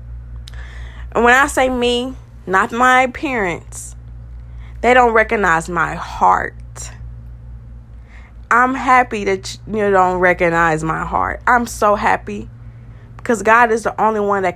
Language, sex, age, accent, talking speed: English, female, 20-39, American, 130 wpm